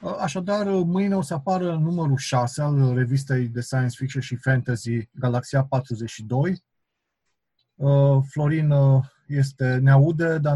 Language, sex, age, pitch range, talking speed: Romanian, male, 30-49, 130-160 Hz, 115 wpm